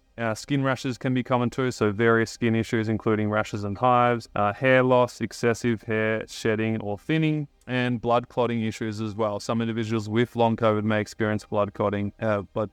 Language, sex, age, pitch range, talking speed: English, male, 20-39, 110-125 Hz, 190 wpm